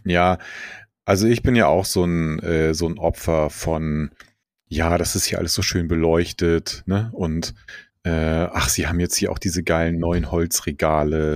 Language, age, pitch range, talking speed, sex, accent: German, 30-49, 85-110 Hz, 180 wpm, male, German